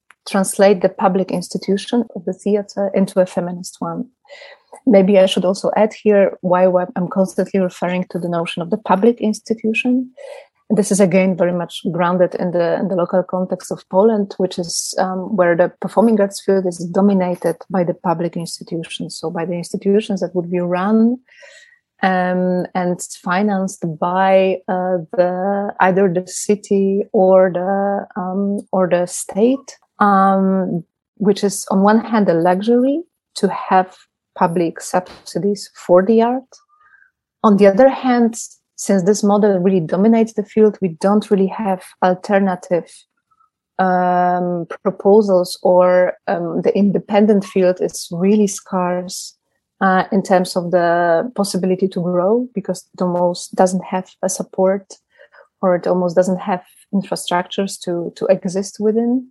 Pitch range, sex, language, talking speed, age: 180-205 Hz, female, English, 145 wpm, 30-49